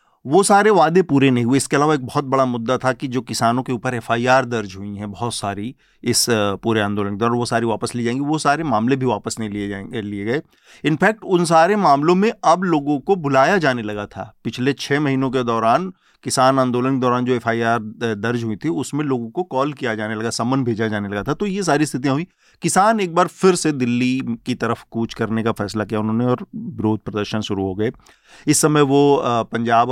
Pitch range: 115-140 Hz